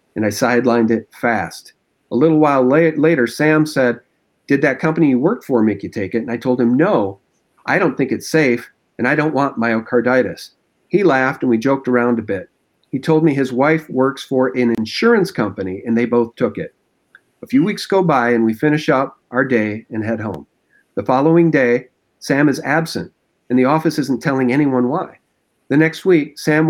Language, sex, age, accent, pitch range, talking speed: English, male, 50-69, American, 120-155 Hz, 200 wpm